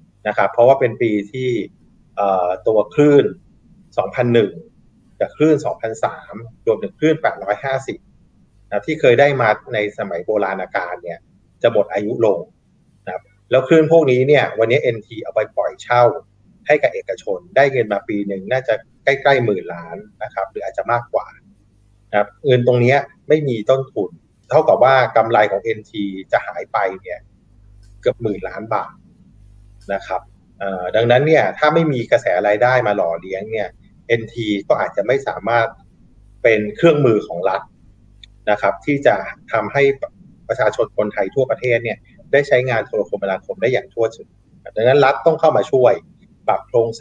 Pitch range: 105-145 Hz